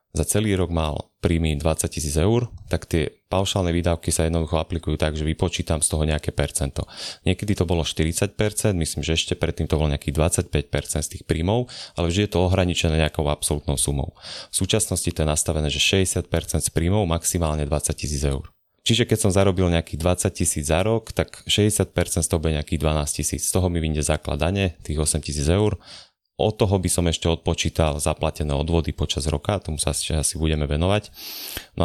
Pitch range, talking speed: 75-90 Hz, 190 wpm